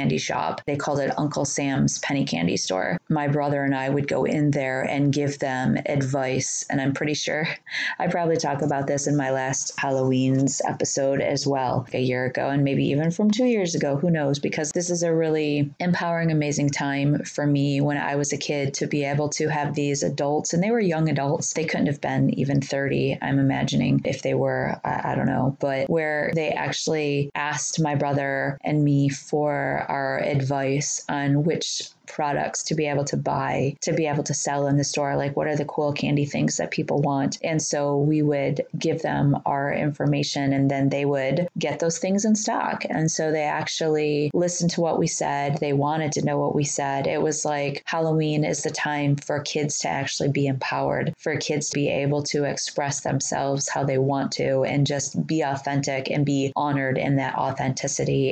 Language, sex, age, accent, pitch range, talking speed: English, female, 20-39, American, 140-150 Hz, 205 wpm